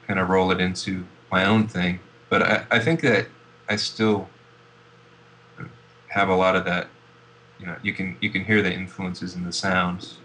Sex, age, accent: male, 20-39, American